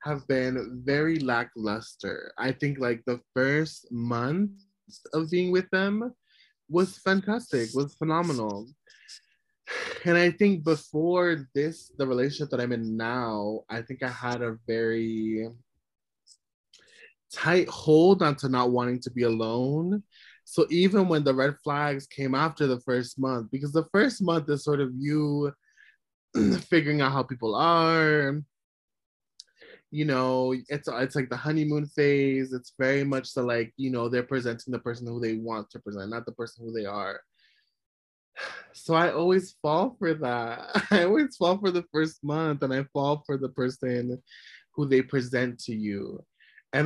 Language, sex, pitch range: English, male, 125-165 Hz